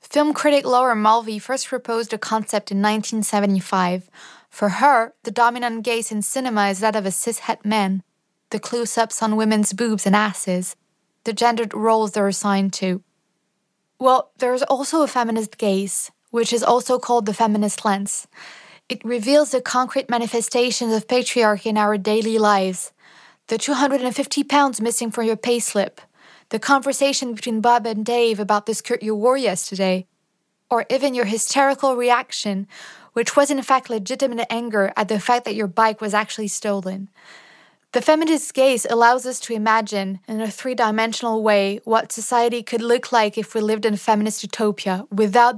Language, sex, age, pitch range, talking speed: English, female, 20-39, 210-245 Hz, 165 wpm